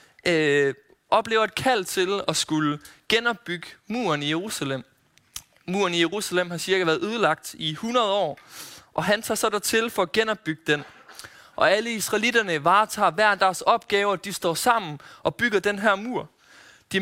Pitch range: 150-205 Hz